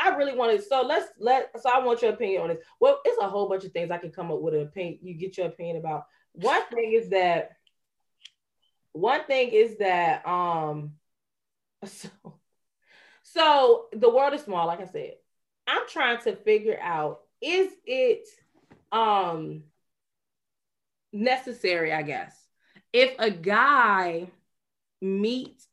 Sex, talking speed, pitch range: female, 150 wpm, 180-275 Hz